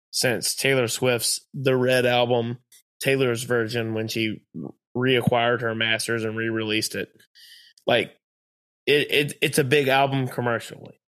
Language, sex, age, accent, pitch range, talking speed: English, male, 20-39, American, 115-130 Hz, 130 wpm